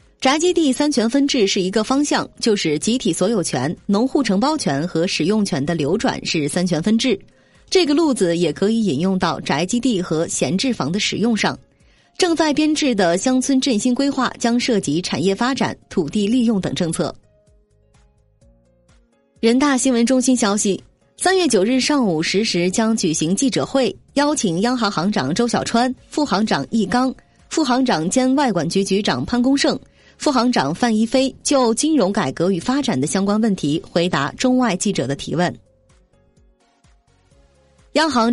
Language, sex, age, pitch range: Chinese, female, 20-39, 185-255 Hz